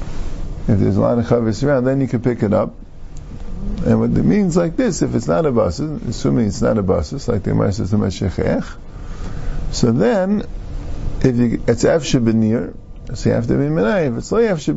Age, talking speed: 50-69, 200 wpm